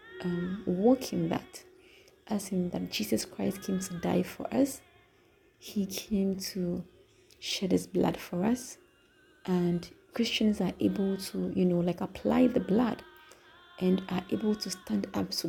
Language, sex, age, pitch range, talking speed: English, female, 30-49, 180-250 Hz, 150 wpm